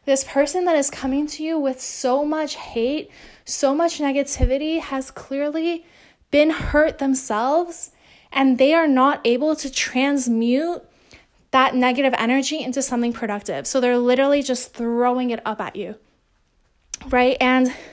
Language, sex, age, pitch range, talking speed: English, female, 10-29, 235-285 Hz, 145 wpm